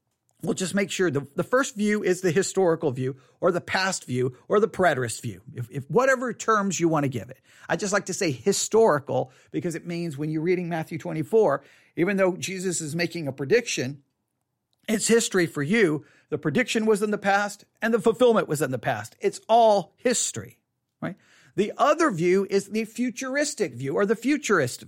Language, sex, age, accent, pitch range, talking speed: English, male, 40-59, American, 165-225 Hz, 195 wpm